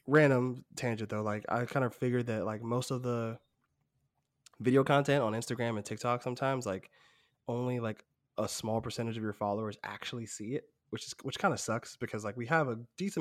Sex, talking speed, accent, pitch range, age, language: male, 200 wpm, American, 105-130 Hz, 20-39, English